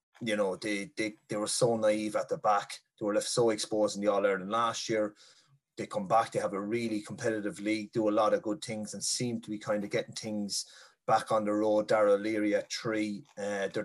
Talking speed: 235 wpm